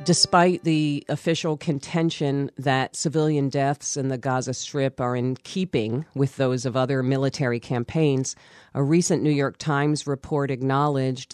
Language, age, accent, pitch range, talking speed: English, 40-59, American, 125-160 Hz, 145 wpm